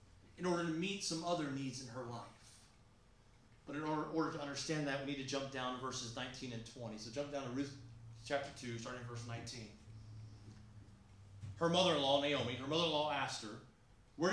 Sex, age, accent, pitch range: male, 40-59, American, 115-180 Hz